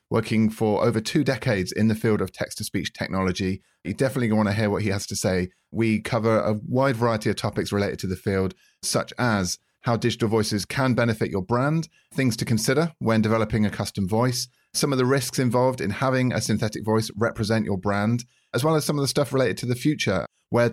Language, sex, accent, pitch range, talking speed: English, male, British, 105-125 Hz, 215 wpm